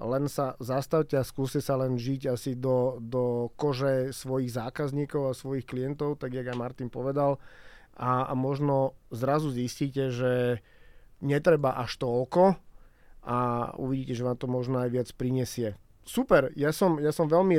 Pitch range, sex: 130-145 Hz, male